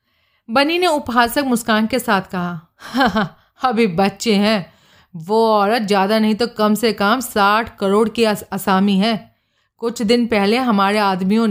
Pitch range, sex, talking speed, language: 190-235 Hz, female, 150 wpm, Hindi